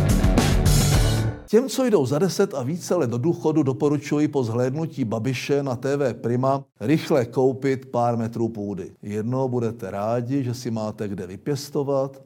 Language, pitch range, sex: Czech, 115-145 Hz, male